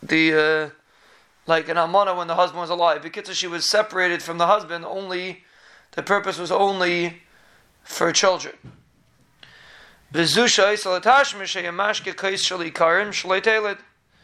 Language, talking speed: English, 115 wpm